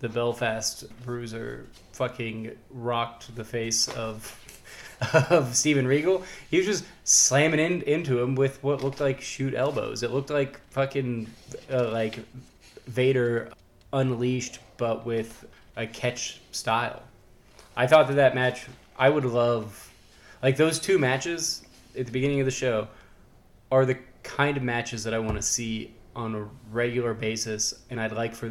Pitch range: 110-130 Hz